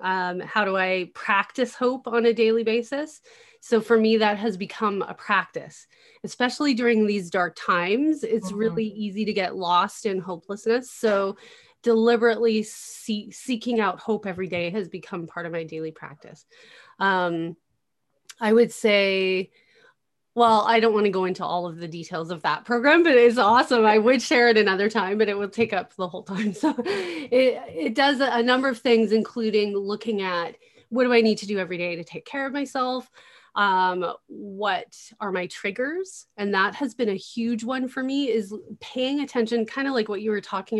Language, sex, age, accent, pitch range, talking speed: English, female, 30-49, American, 195-245 Hz, 190 wpm